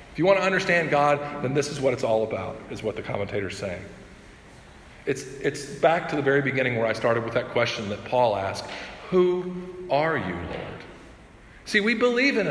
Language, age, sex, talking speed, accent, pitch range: English, 50-69, male, 200 wpm, American, 180-300 Hz